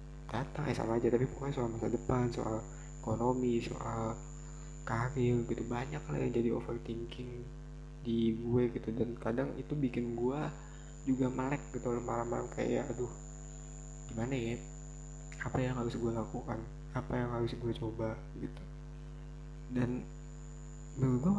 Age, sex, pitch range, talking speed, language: 20-39, male, 120-150 Hz, 130 wpm, Indonesian